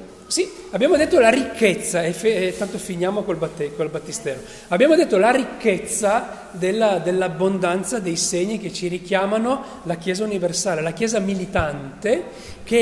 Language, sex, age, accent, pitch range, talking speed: Italian, male, 40-59, native, 180-255 Hz, 135 wpm